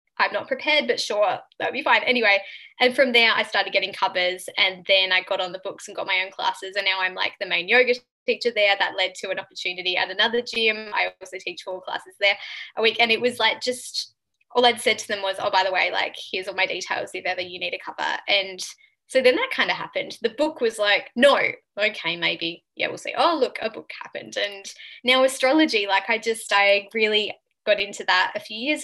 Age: 10-29